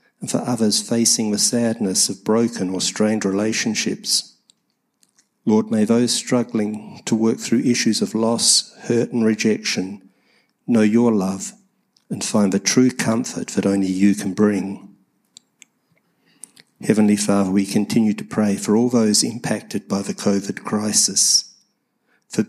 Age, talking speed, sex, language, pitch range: 50-69, 140 wpm, male, English, 100-120 Hz